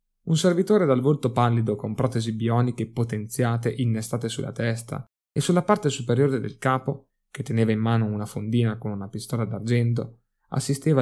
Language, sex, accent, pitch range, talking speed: Italian, male, native, 115-140 Hz, 160 wpm